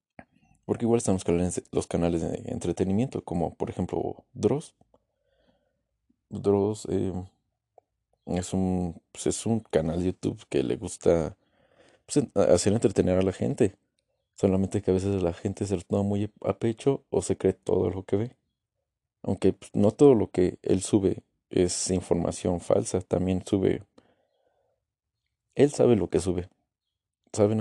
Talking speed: 150 wpm